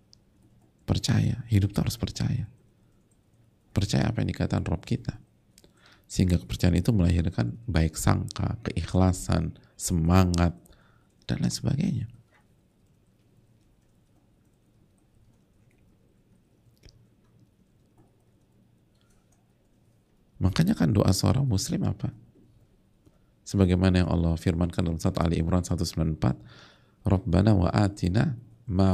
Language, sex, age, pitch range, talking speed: Indonesian, male, 50-69, 90-120 Hz, 80 wpm